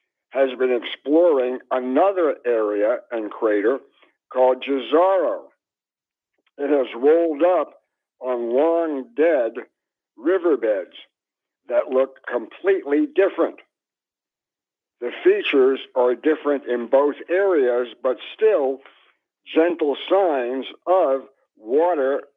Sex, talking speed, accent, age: male, 90 wpm, American, 60-79